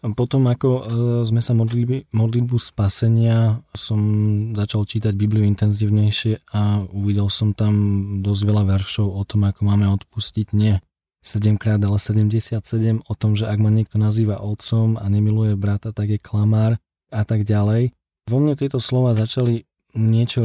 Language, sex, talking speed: Slovak, male, 145 wpm